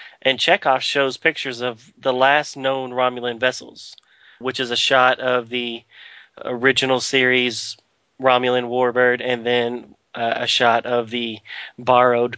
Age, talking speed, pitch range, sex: 30-49, 135 wpm, 125-140 Hz, male